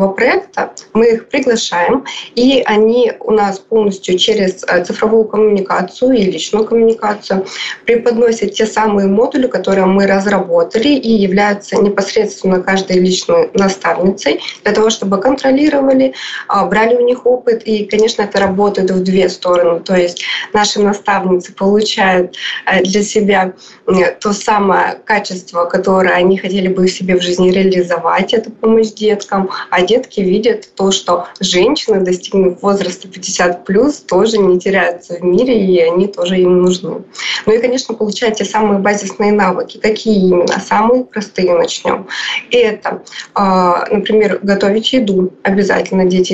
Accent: native